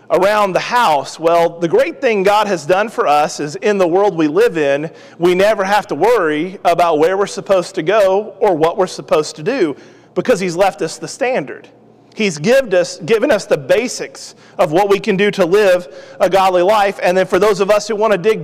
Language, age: English, 40-59